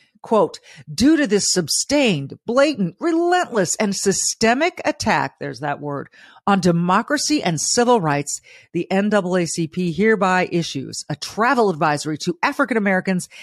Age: 40-59